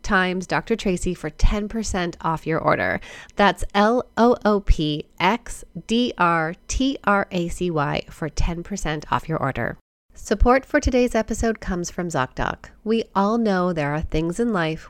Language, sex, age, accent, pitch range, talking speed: English, female, 30-49, American, 160-215 Hz, 120 wpm